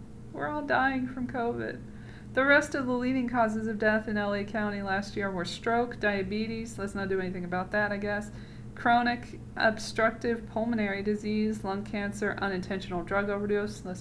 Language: English